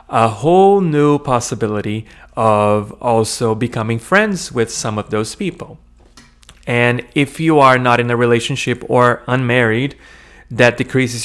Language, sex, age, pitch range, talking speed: English, male, 30-49, 115-145 Hz, 135 wpm